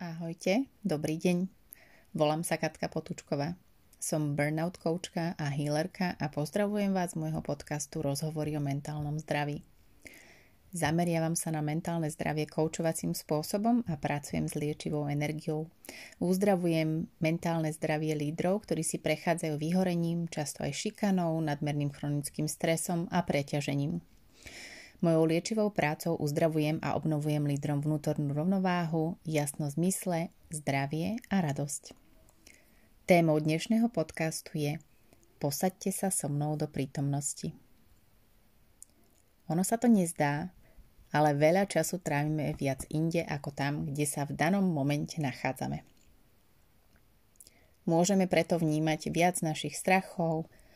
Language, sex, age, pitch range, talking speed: Slovak, female, 30-49, 150-175 Hz, 115 wpm